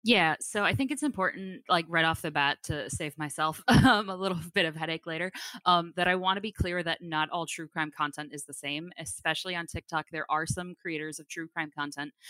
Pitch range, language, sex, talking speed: 150-175 Hz, English, female, 235 wpm